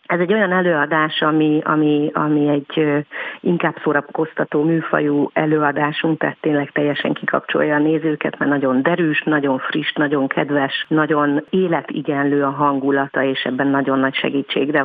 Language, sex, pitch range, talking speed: Hungarian, female, 140-160 Hz, 135 wpm